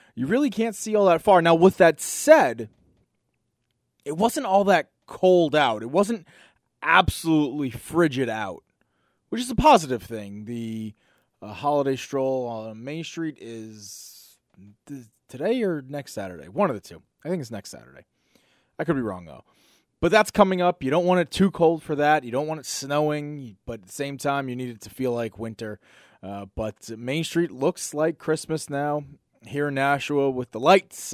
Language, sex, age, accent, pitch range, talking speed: English, male, 20-39, American, 115-165 Hz, 185 wpm